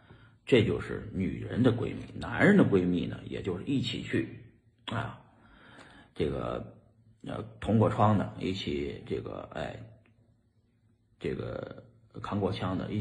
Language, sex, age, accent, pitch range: Chinese, male, 50-69, native, 105-125 Hz